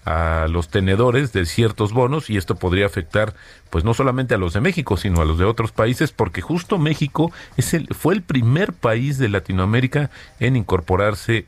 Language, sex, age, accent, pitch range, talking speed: Spanish, male, 40-59, Mexican, 95-125 Hz, 190 wpm